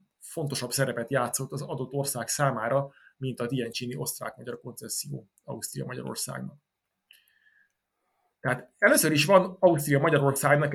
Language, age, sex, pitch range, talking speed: Hungarian, 30-49, male, 130-175 Hz, 100 wpm